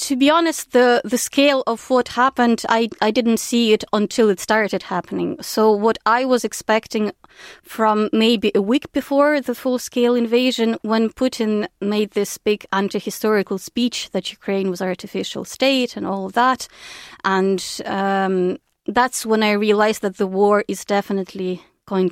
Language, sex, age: English, female, 30-49